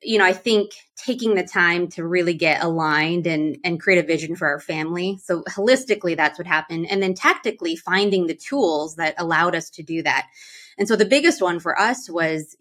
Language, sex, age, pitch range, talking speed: English, female, 20-39, 170-210 Hz, 210 wpm